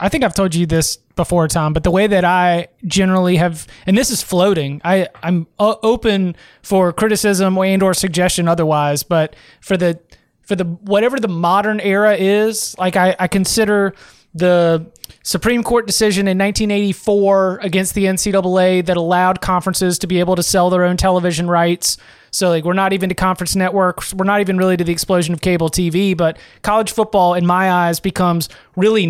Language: English